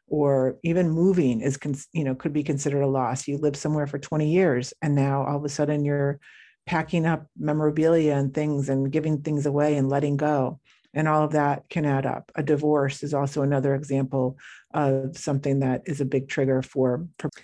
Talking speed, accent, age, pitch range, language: 195 wpm, American, 50-69, 140-160 Hz, English